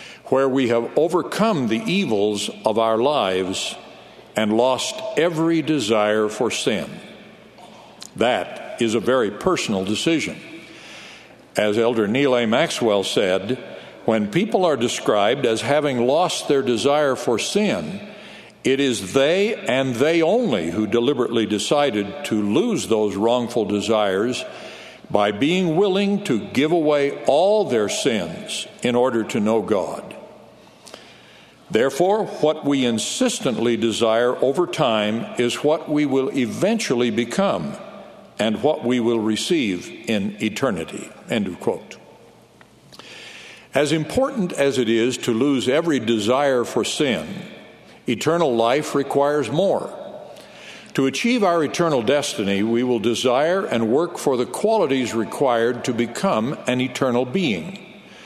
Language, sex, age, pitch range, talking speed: English, male, 60-79, 115-160 Hz, 125 wpm